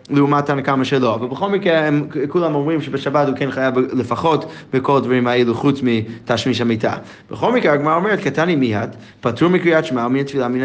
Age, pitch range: 20-39, 130-170 Hz